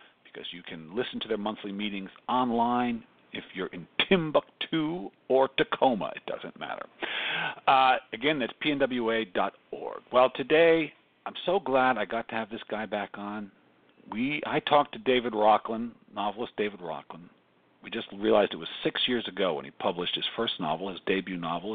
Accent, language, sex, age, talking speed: American, English, male, 50-69, 170 wpm